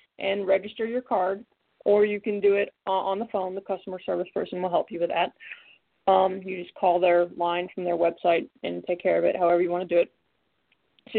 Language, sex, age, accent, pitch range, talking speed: English, female, 20-39, American, 180-215 Hz, 225 wpm